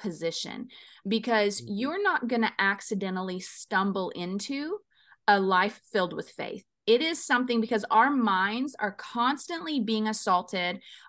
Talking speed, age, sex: 130 wpm, 30-49, female